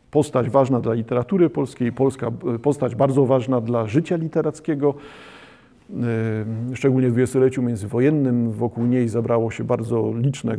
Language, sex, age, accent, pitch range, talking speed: Polish, male, 50-69, native, 120-145 Hz, 125 wpm